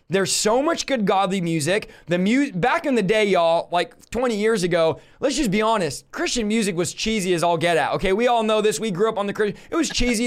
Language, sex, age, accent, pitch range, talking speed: English, male, 20-39, American, 180-225 Hz, 250 wpm